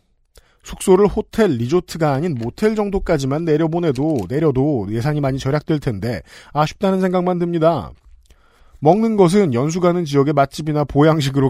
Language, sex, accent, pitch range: Korean, male, native, 135-175 Hz